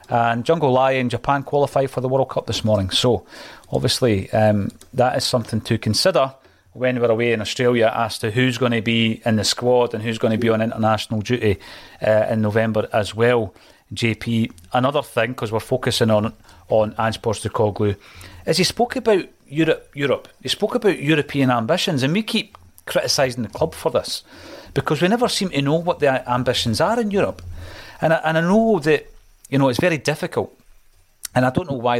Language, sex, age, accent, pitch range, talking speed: English, male, 40-59, British, 110-140 Hz, 195 wpm